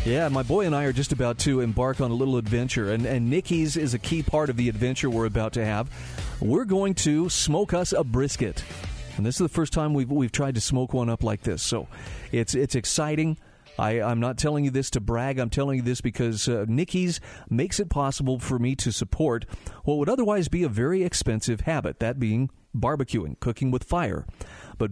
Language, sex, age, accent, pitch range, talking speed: English, male, 40-59, American, 115-155 Hz, 220 wpm